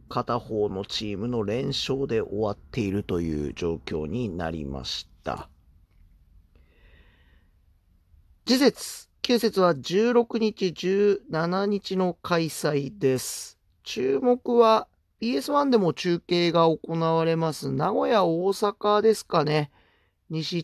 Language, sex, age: Japanese, male, 40-59